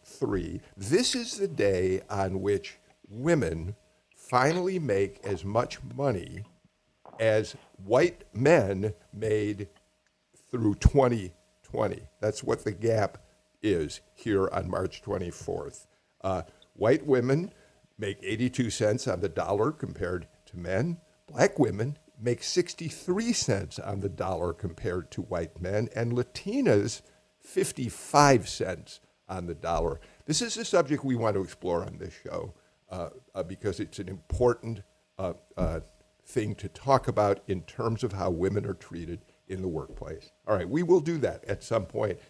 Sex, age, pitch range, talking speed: male, 50-69, 100-130 Hz, 145 wpm